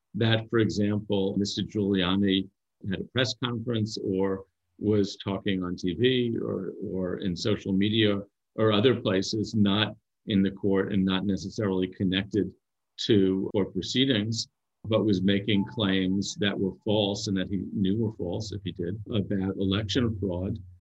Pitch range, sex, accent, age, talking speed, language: 95-115 Hz, male, American, 50-69, 150 wpm, English